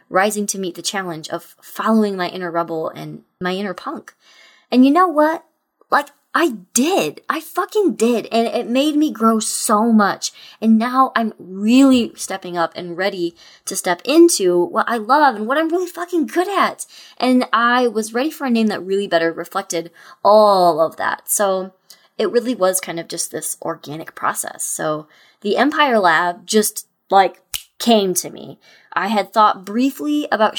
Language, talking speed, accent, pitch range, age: English, 175 wpm, American, 185-255 Hz, 20-39